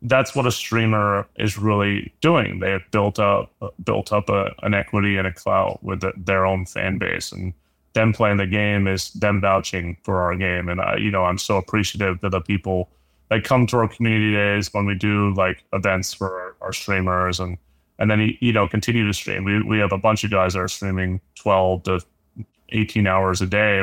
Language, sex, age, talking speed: English, male, 20-39, 210 wpm